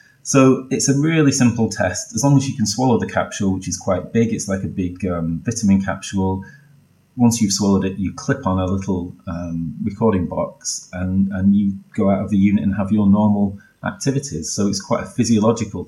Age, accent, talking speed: 30-49, British, 210 wpm